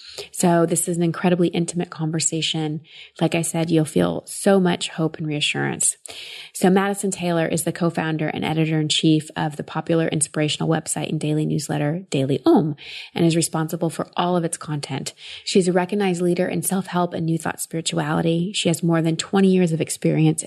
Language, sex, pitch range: English, female, 155-175 Hz